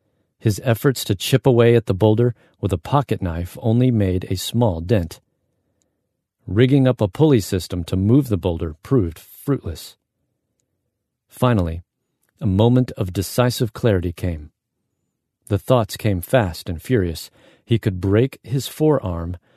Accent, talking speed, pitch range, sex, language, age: American, 140 wpm, 95-125 Hz, male, English, 40-59